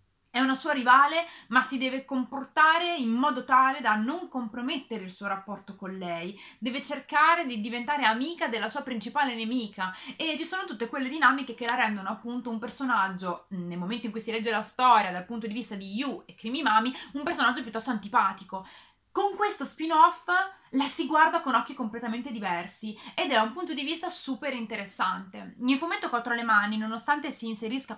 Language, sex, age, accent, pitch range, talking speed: Italian, female, 30-49, native, 220-285 Hz, 185 wpm